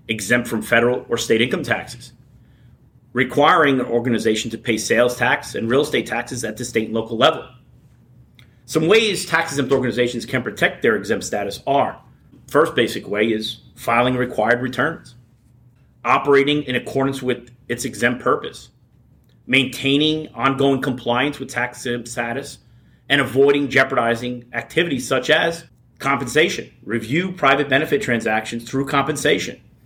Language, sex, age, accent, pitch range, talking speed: English, male, 30-49, American, 120-140 Hz, 135 wpm